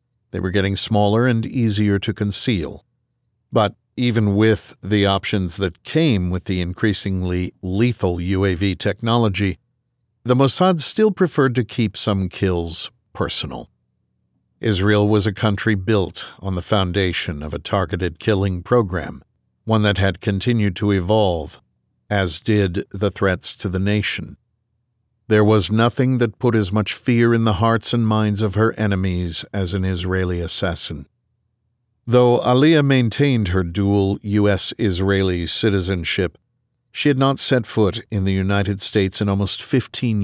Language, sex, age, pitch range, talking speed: English, male, 50-69, 90-115 Hz, 145 wpm